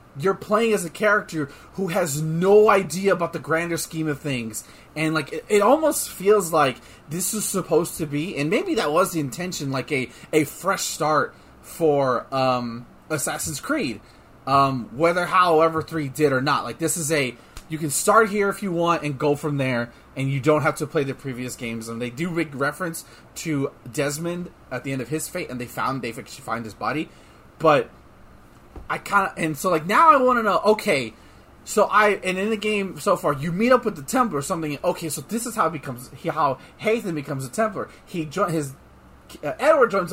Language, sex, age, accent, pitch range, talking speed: English, male, 30-49, American, 140-195 Hz, 210 wpm